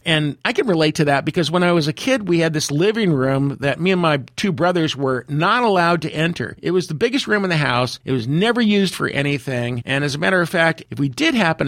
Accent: American